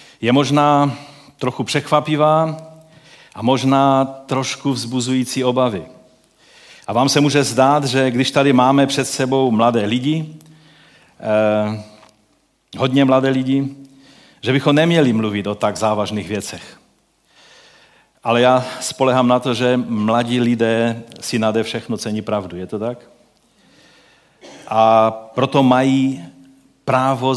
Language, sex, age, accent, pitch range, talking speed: Czech, male, 40-59, native, 120-155 Hz, 115 wpm